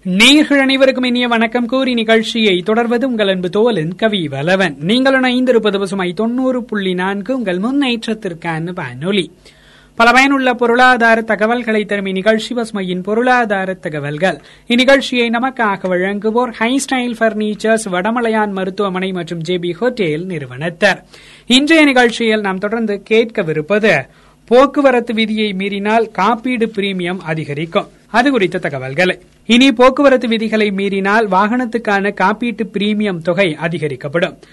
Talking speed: 85 wpm